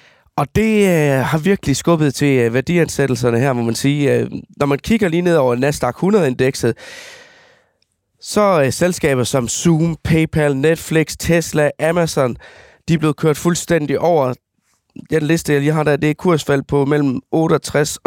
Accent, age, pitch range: native, 20-39, 130-160 Hz